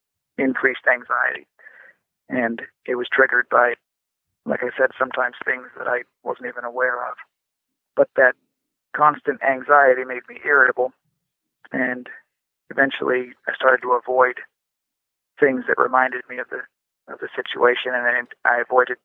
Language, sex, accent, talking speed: English, male, American, 140 wpm